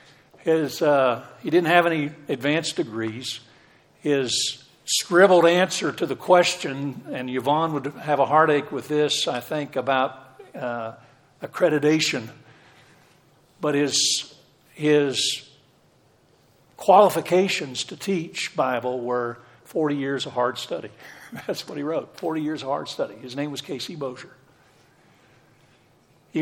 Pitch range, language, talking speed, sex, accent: 130-155 Hz, English, 125 wpm, male, American